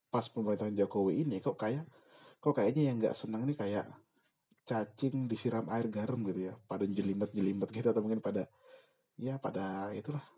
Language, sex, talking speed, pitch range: Indonesian, male, 170 wpm, 100-135 Hz